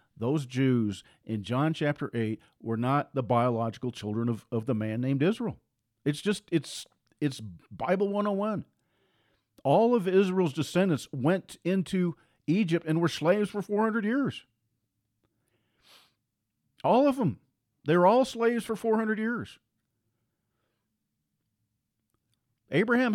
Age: 50-69